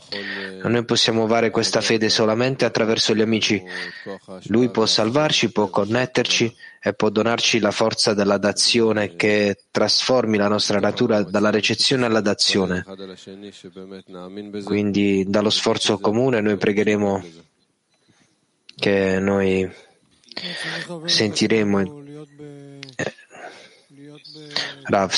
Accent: native